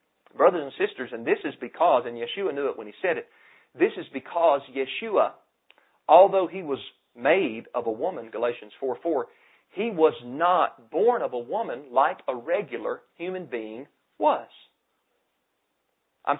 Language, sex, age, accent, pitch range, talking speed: English, male, 40-59, American, 125-205 Hz, 155 wpm